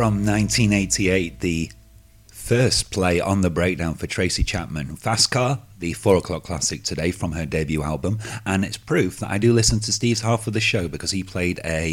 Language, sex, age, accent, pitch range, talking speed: English, male, 30-49, British, 90-110 Hz, 195 wpm